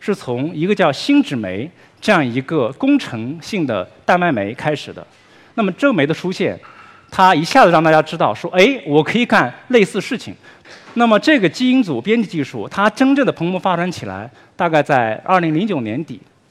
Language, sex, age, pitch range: Chinese, male, 50-69, 145-225 Hz